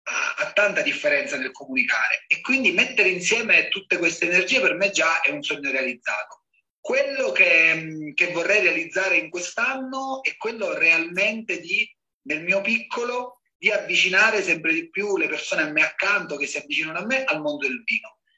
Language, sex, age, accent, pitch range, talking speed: Italian, male, 30-49, native, 175-280 Hz, 170 wpm